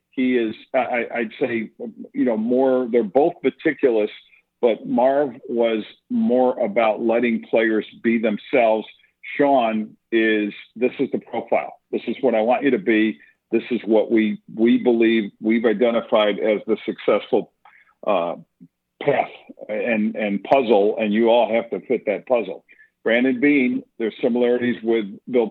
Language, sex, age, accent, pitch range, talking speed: English, male, 50-69, American, 110-125 Hz, 150 wpm